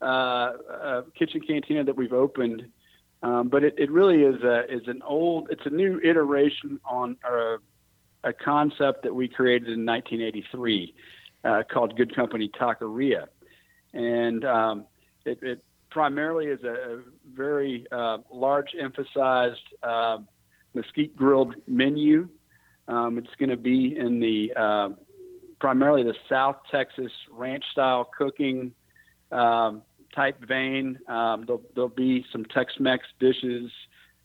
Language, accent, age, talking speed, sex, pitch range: English, American, 50-69, 135 wpm, male, 120-140 Hz